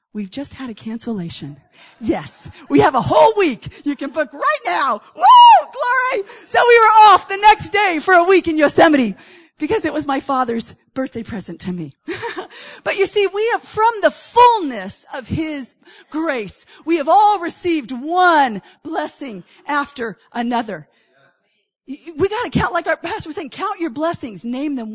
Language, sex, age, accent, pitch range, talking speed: English, female, 40-59, American, 255-375 Hz, 175 wpm